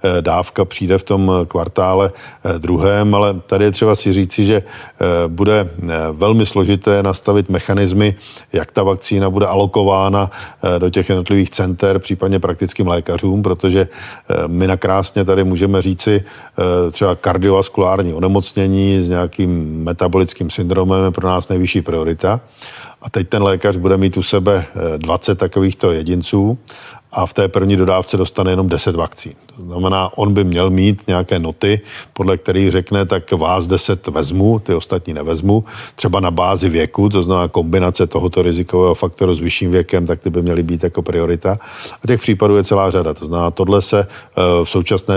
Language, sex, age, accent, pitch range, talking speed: Czech, male, 40-59, native, 90-100 Hz, 155 wpm